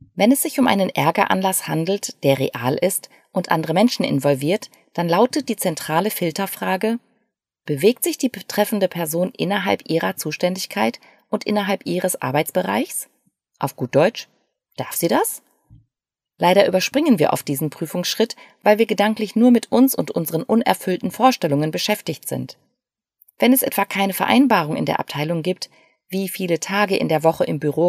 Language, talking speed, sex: German, 155 wpm, female